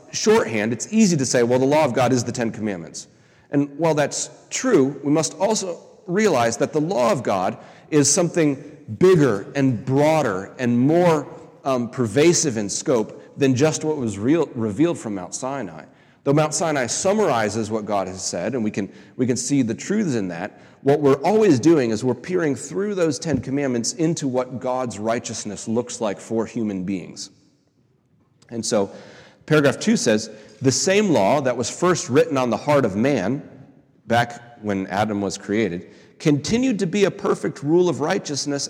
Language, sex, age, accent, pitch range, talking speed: English, male, 30-49, American, 110-155 Hz, 175 wpm